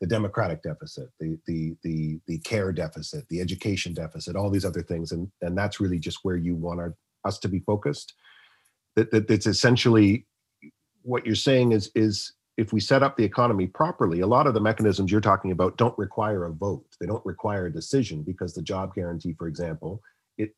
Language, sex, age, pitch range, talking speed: English, male, 40-59, 90-110 Hz, 200 wpm